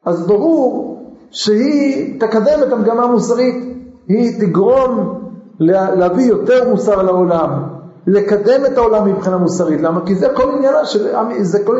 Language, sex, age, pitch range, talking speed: Hebrew, male, 50-69, 175-245 Hz, 125 wpm